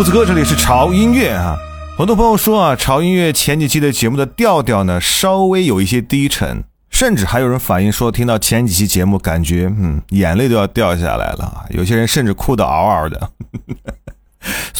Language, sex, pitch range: Chinese, male, 95-155 Hz